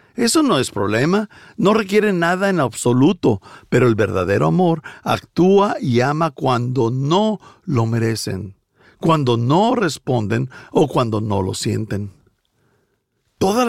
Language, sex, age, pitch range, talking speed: Spanish, male, 50-69, 120-175 Hz, 125 wpm